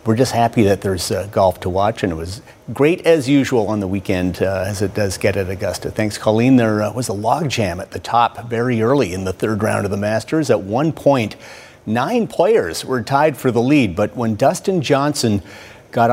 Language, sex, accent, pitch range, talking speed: English, male, American, 110-140 Hz, 225 wpm